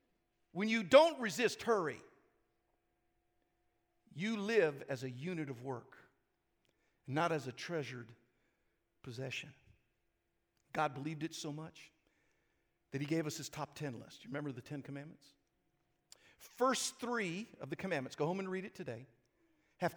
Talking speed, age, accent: 140 wpm, 50-69, American